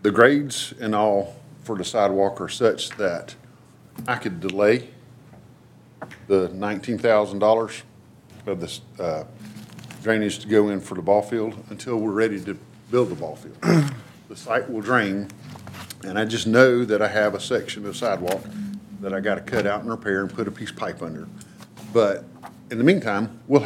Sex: male